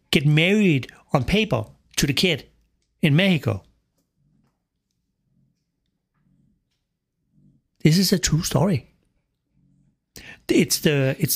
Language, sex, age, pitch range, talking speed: English, male, 60-79, 125-175 Hz, 90 wpm